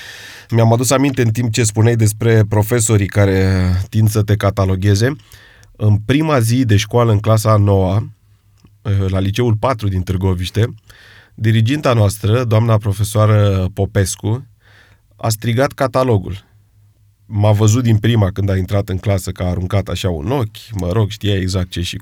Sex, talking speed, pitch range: male, 155 wpm, 100-120 Hz